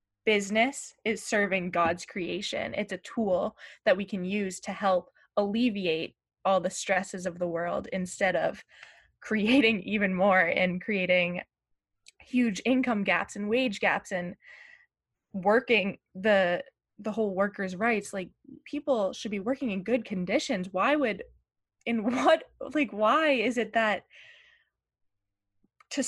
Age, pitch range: 20-39, 190-255 Hz